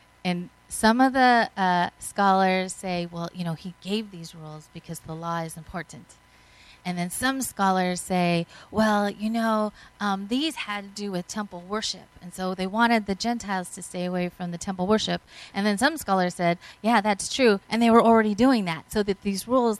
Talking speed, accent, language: 200 wpm, American, English